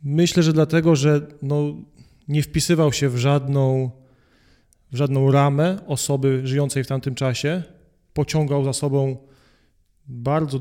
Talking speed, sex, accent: 115 wpm, male, native